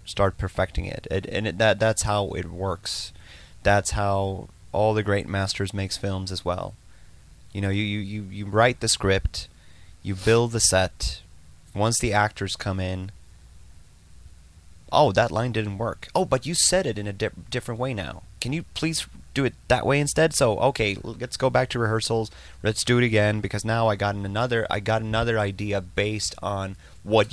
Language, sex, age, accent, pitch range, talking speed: English, male, 30-49, American, 95-110 Hz, 185 wpm